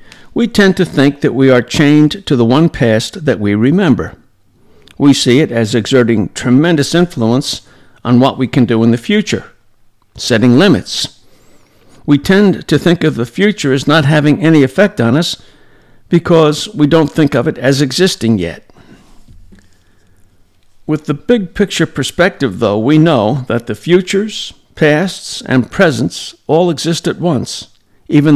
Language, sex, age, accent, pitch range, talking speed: English, male, 60-79, American, 120-160 Hz, 155 wpm